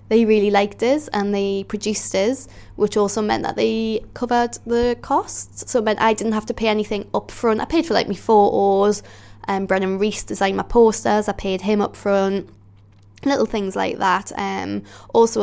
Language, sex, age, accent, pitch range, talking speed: English, female, 10-29, British, 190-220 Hz, 200 wpm